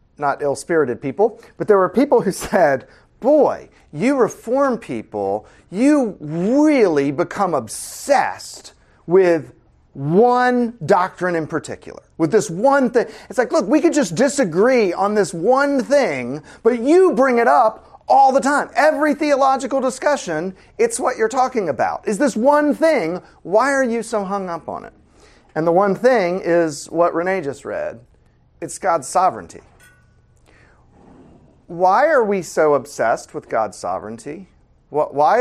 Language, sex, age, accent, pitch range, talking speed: English, male, 40-59, American, 165-265 Hz, 145 wpm